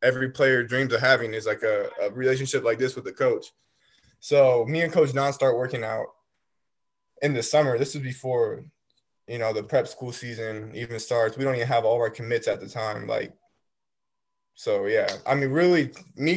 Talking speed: 200 wpm